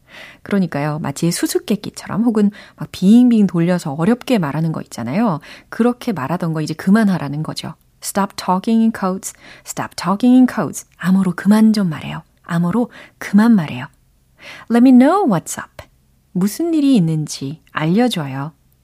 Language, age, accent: Korean, 30-49, native